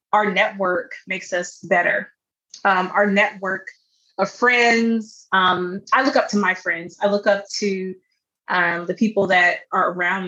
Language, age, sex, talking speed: English, 20-39, female, 160 wpm